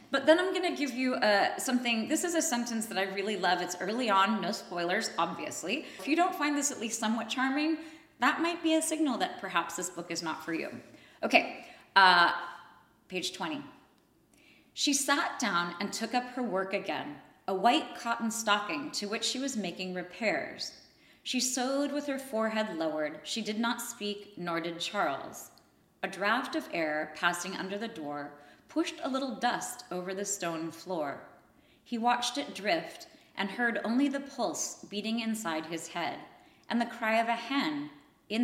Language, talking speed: English, 180 wpm